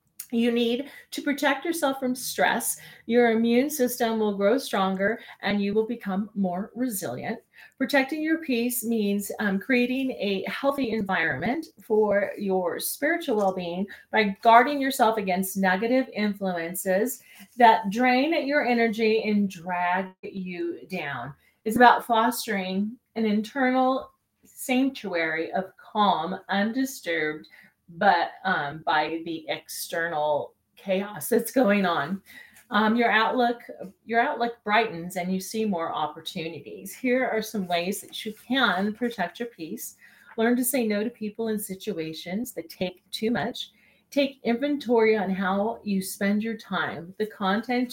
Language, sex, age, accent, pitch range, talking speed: English, female, 30-49, American, 190-240 Hz, 135 wpm